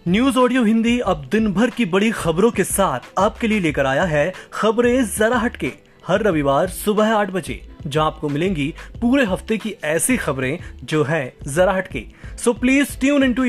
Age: 20-39